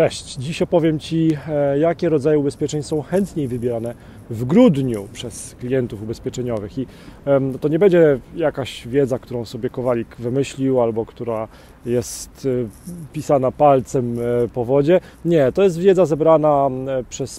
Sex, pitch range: male, 125-165 Hz